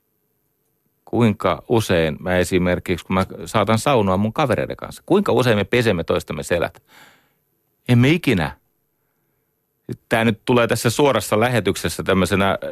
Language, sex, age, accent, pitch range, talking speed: Finnish, male, 40-59, native, 95-145 Hz, 125 wpm